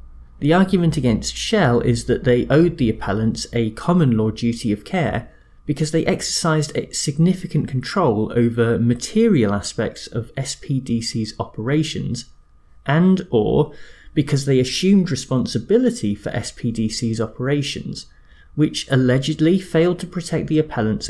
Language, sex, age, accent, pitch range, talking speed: English, male, 20-39, British, 110-150 Hz, 125 wpm